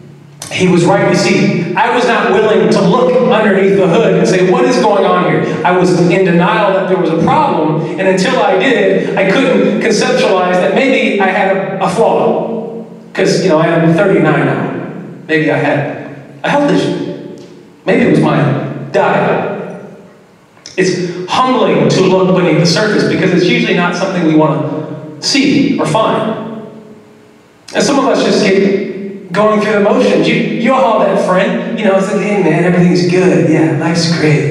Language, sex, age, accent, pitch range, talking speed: English, male, 30-49, American, 165-205 Hz, 185 wpm